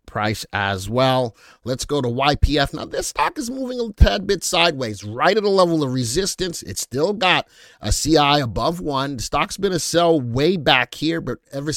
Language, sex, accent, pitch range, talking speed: English, male, American, 120-155 Hz, 200 wpm